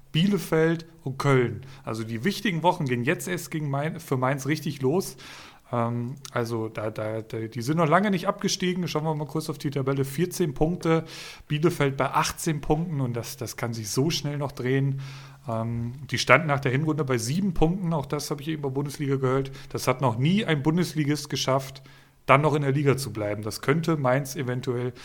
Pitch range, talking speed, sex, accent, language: 130-150 Hz, 195 wpm, male, German, German